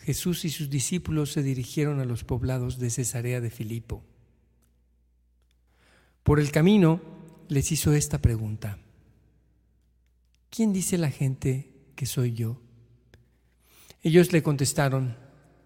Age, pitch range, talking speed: 50-69, 110-150 Hz, 115 wpm